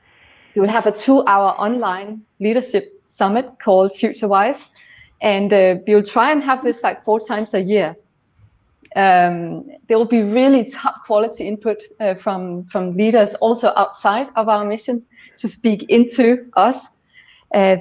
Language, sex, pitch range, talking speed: English, female, 190-225 Hz, 155 wpm